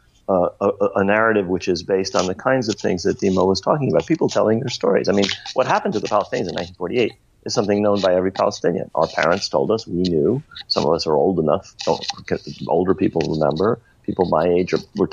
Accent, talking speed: American, 225 wpm